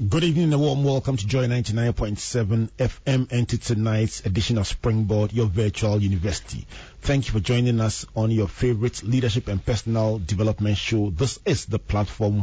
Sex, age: male, 40-59